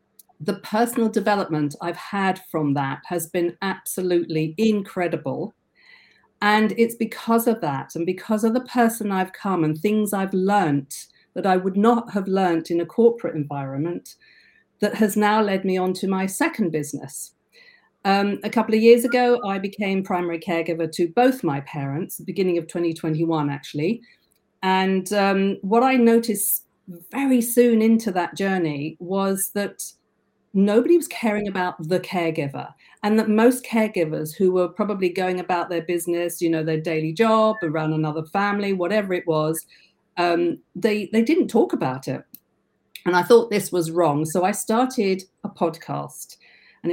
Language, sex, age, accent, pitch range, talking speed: English, female, 50-69, British, 170-215 Hz, 160 wpm